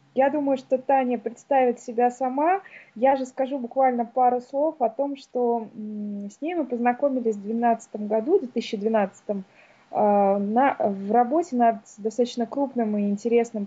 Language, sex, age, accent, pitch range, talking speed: Russian, female, 20-39, native, 215-260 Hz, 145 wpm